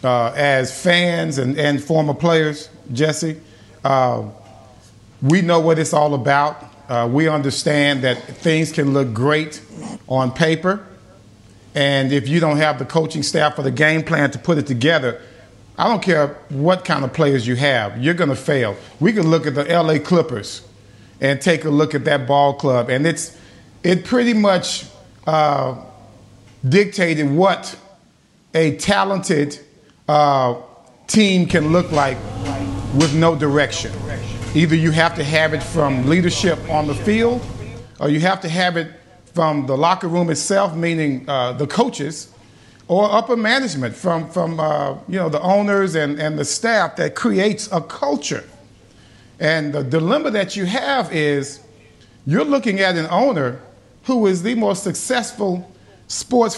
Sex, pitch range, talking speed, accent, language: male, 130-175 Hz, 160 wpm, American, English